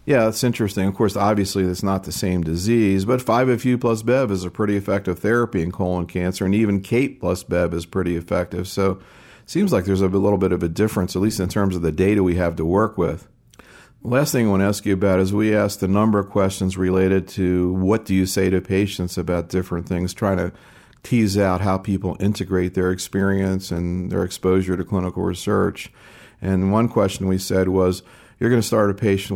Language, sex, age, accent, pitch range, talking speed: English, male, 50-69, American, 90-105 Hz, 220 wpm